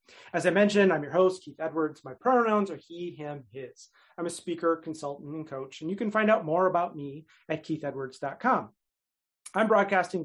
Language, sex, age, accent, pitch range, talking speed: English, male, 30-49, American, 150-195 Hz, 185 wpm